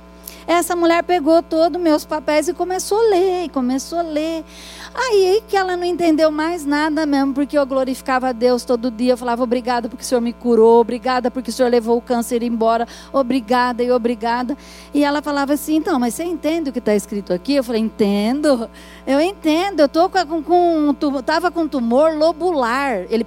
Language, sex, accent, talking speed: Portuguese, female, Brazilian, 200 wpm